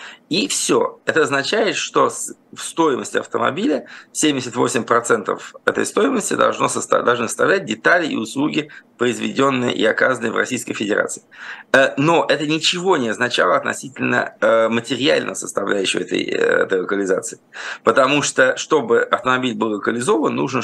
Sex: male